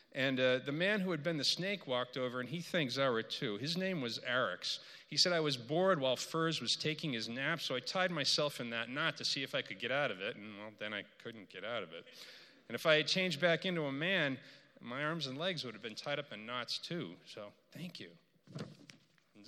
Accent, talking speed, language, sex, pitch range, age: American, 250 wpm, English, male, 120-175 Hz, 40-59